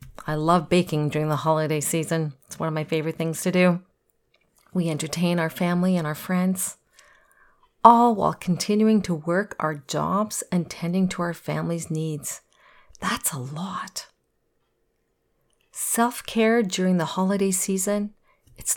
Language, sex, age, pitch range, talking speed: English, female, 40-59, 160-200 Hz, 140 wpm